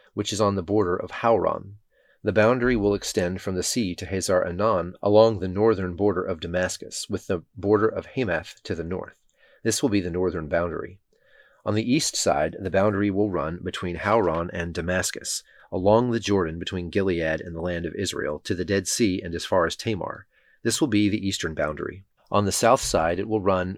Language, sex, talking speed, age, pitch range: English, male, 200 wpm, 30-49, 90-105 Hz